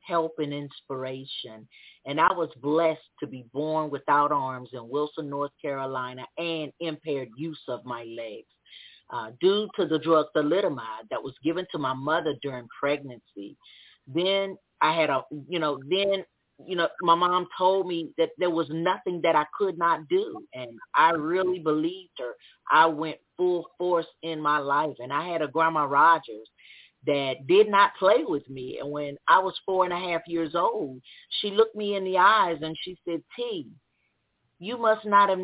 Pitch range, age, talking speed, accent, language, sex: 150-190 Hz, 40-59, 180 wpm, American, English, female